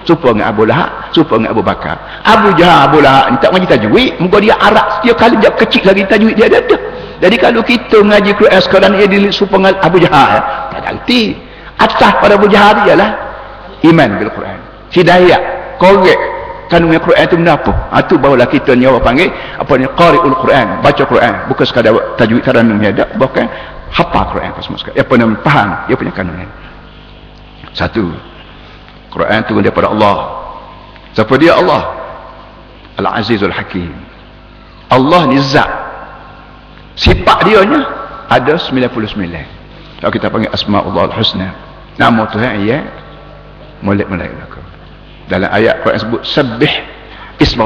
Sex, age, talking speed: male, 50-69, 150 wpm